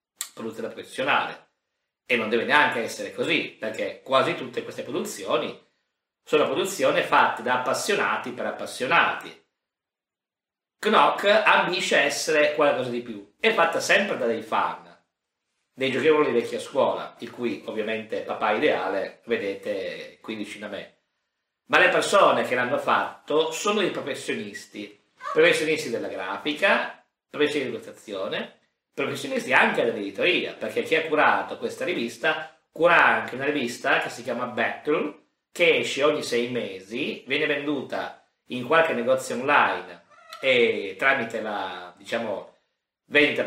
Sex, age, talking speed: male, 50-69, 130 wpm